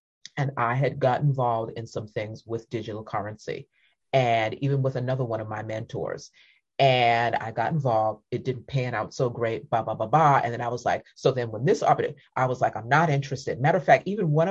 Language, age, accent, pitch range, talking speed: English, 30-49, American, 115-150 Hz, 225 wpm